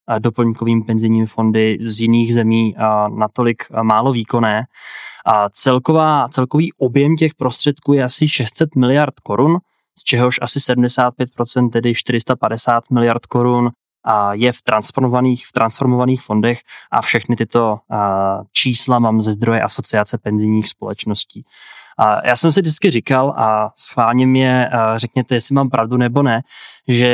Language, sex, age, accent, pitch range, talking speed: Czech, male, 20-39, native, 115-130 Hz, 125 wpm